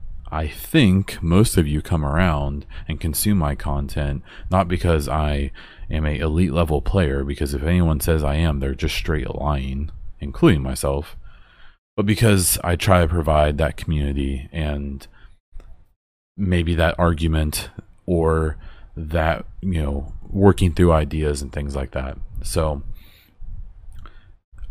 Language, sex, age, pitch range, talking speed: English, male, 30-49, 75-90 Hz, 135 wpm